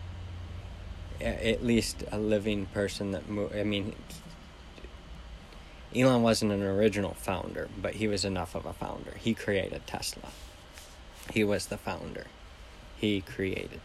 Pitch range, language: 85-105 Hz, English